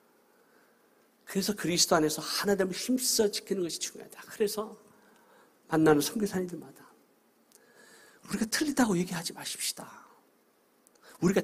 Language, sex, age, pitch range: Korean, male, 50-69, 180-250 Hz